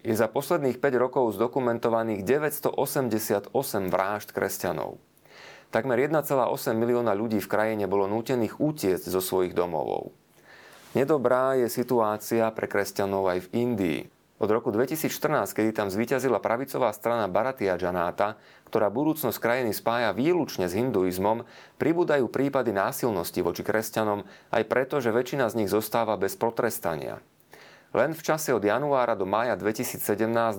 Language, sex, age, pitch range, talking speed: Slovak, male, 30-49, 100-120 Hz, 135 wpm